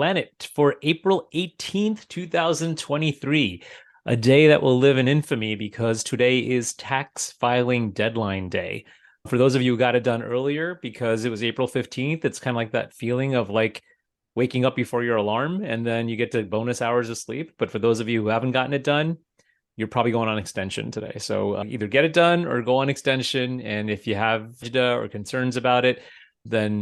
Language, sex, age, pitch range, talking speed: English, male, 30-49, 110-135 Hz, 200 wpm